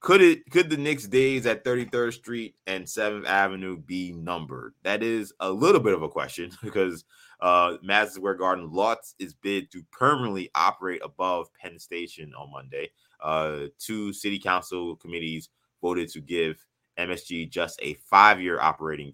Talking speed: 165 wpm